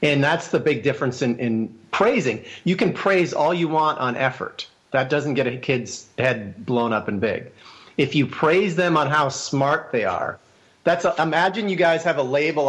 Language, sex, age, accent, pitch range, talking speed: English, male, 40-59, American, 125-155 Hz, 205 wpm